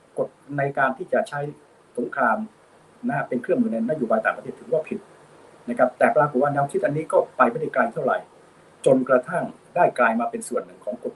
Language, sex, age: Thai, male, 60-79